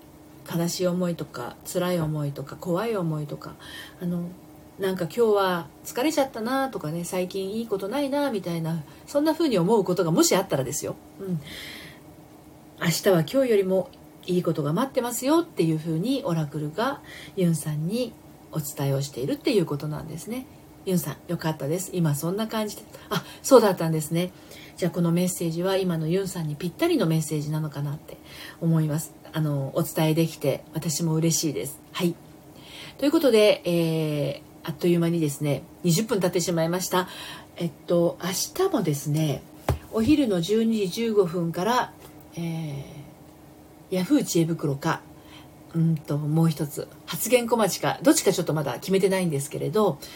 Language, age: Japanese, 40-59